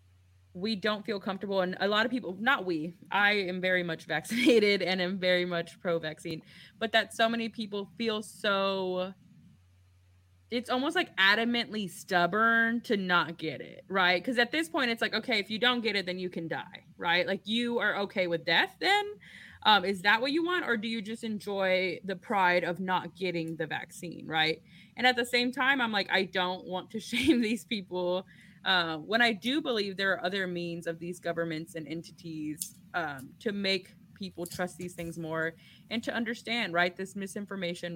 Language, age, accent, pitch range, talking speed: English, 20-39, American, 170-220 Hz, 195 wpm